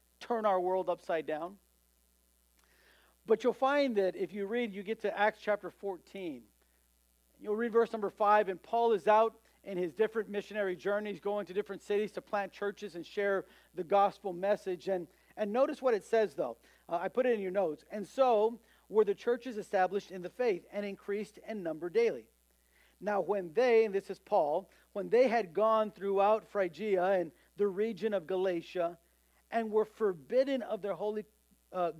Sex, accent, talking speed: male, American, 180 wpm